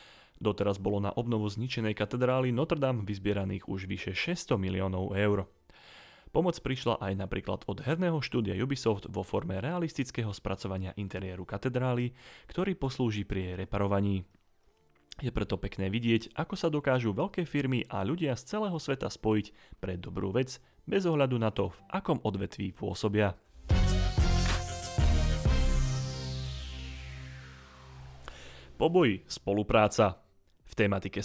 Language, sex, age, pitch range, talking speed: Slovak, male, 30-49, 95-125 Hz, 120 wpm